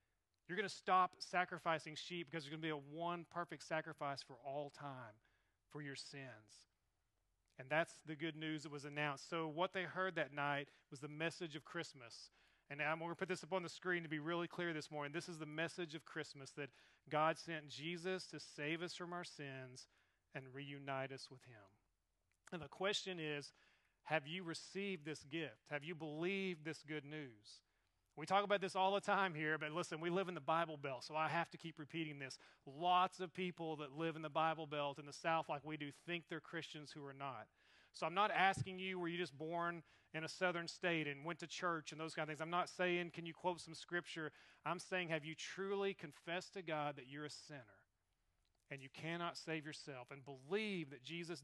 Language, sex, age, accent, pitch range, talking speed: English, male, 40-59, American, 140-170 Hz, 220 wpm